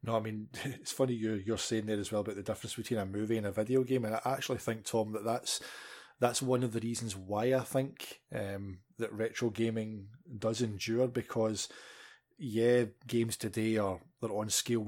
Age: 20-39